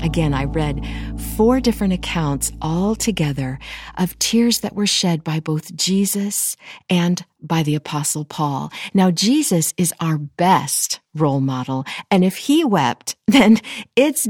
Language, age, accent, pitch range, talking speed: English, 50-69, American, 155-225 Hz, 145 wpm